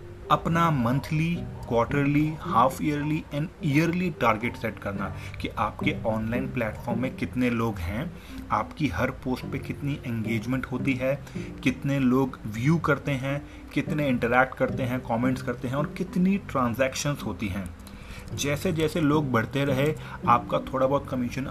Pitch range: 115-150 Hz